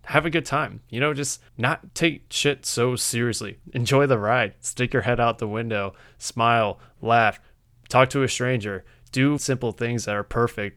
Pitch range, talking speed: 105-125 Hz, 185 wpm